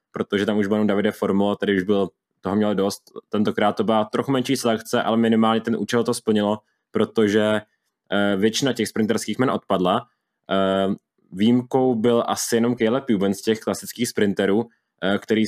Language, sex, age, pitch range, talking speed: Czech, male, 20-39, 100-115 Hz, 160 wpm